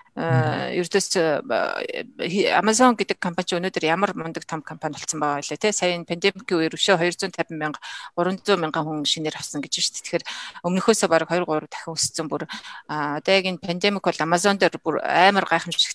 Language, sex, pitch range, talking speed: Russian, female, 160-205 Hz, 55 wpm